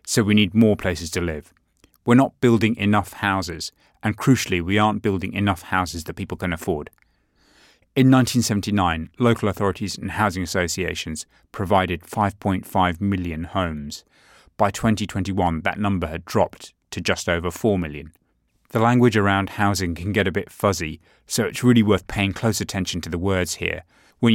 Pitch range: 90-110 Hz